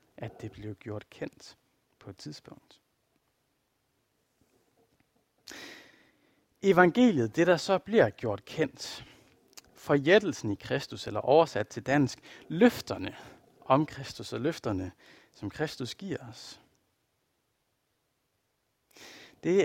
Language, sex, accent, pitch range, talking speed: Danish, male, native, 115-155 Hz, 100 wpm